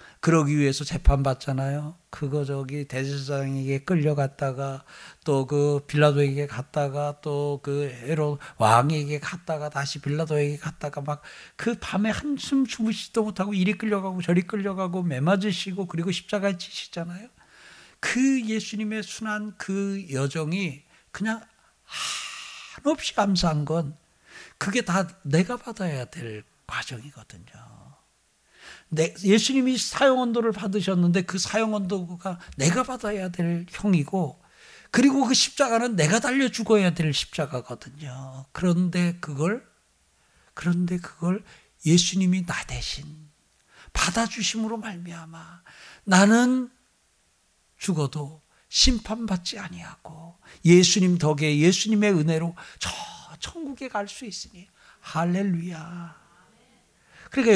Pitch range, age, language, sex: 150-210 Hz, 60-79, Korean, male